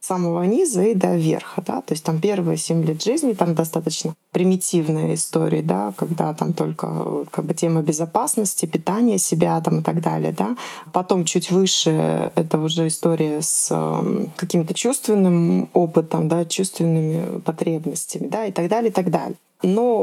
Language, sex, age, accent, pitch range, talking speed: Russian, female, 20-39, native, 165-200 Hz, 160 wpm